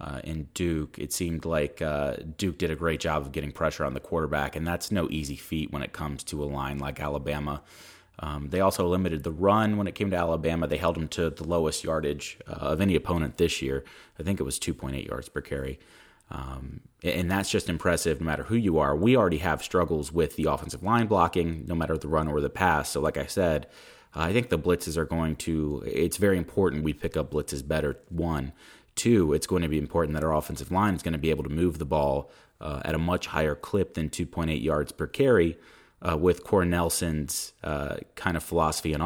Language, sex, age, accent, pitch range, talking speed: English, male, 30-49, American, 75-85 Hz, 225 wpm